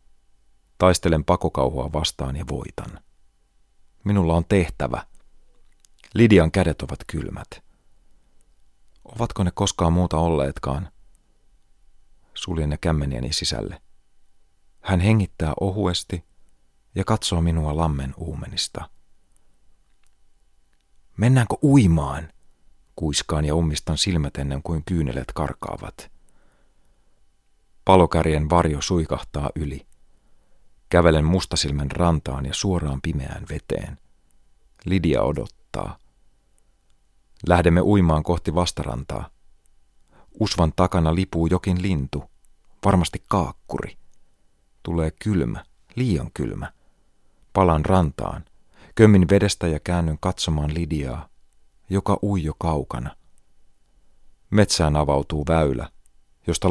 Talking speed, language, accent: 90 wpm, Finnish, native